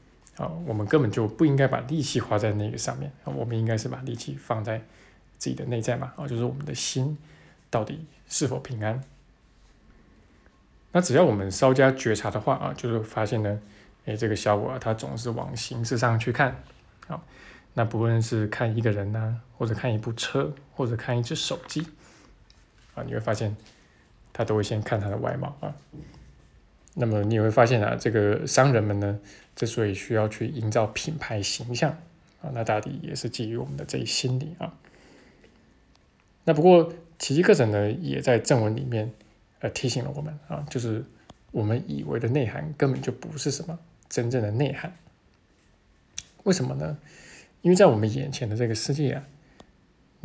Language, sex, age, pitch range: Chinese, male, 20-39, 110-140 Hz